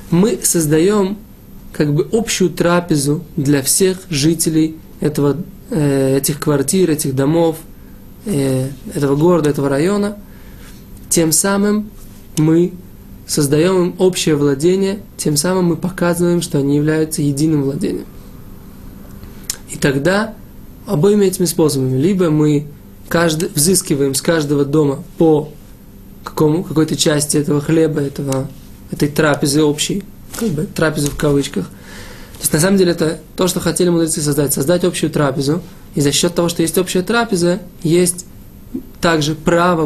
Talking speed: 125 wpm